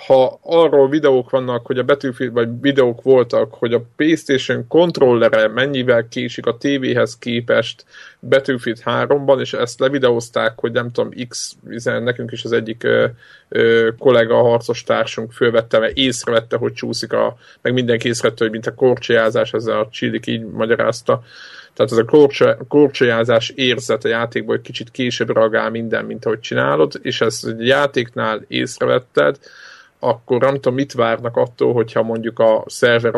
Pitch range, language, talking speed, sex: 115-135 Hz, Hungarian, 155 wpm, male